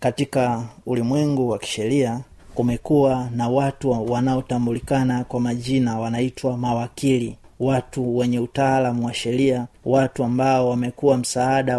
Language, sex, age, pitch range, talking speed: Swahili, male, 30-49, 115-130 Hz, 105 wpm